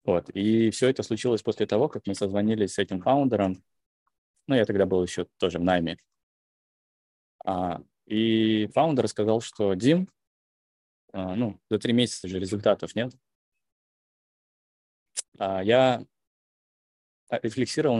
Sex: male